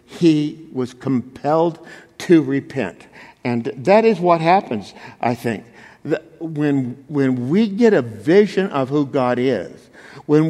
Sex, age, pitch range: male, 50-69, 130-180 Hz